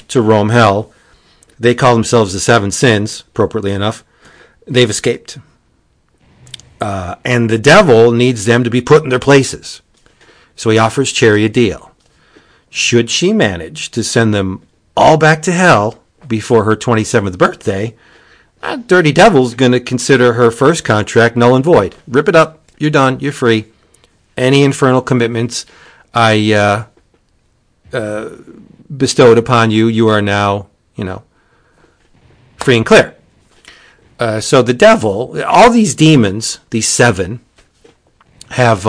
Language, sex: English, male